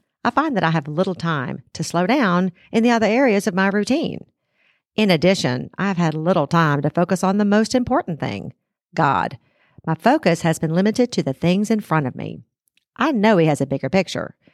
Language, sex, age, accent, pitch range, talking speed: English, female, 50-69, American, 155-210 Hz, 205 wpm